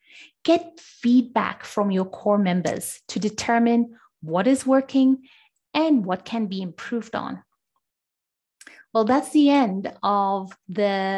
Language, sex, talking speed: English, female, 125 wpm